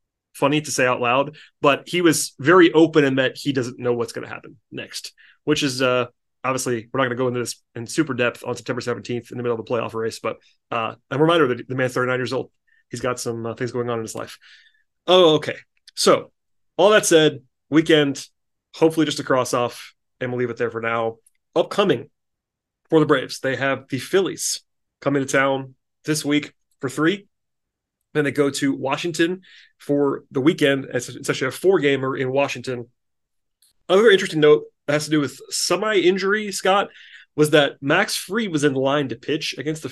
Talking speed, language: 200 wpm, English